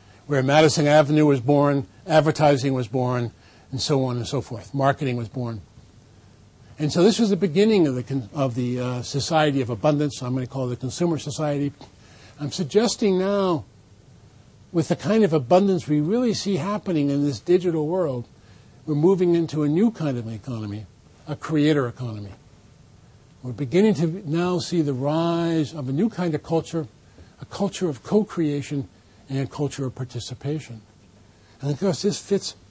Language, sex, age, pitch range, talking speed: English, male, 50-69, 120-170 Hz, 165 wpm